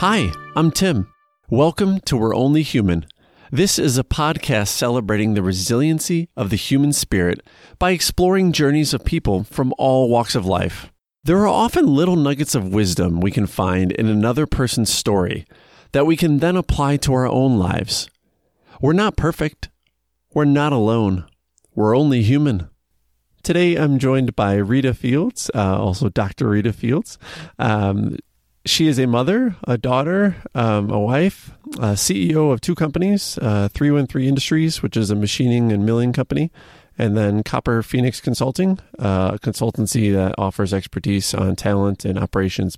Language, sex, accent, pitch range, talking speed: English, male, American, 100-140 Hz, 160 wpm